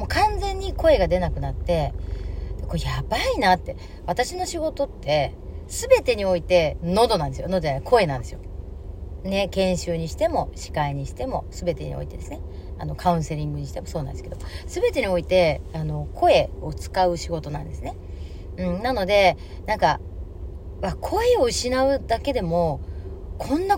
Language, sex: Japanese, female